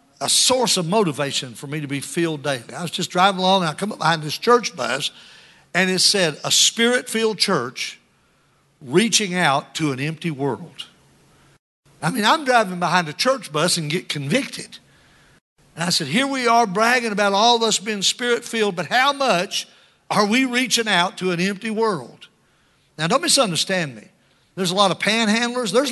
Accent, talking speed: American, 185 wpm